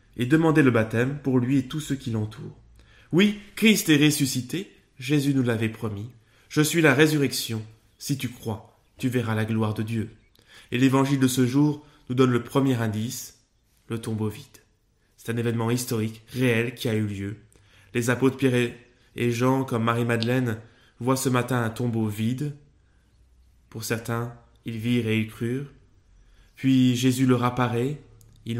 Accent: French